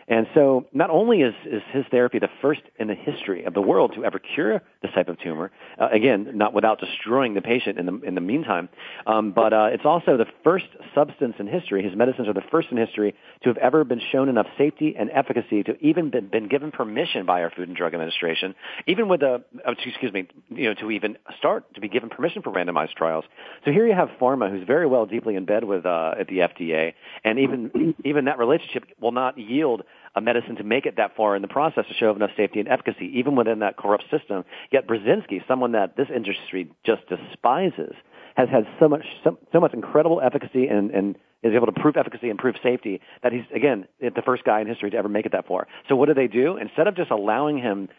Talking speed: 235 wpm